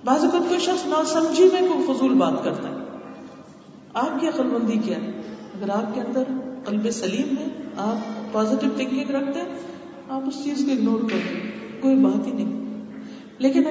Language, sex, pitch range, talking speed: Urdu, female, 195-270 Hz, 165 wpm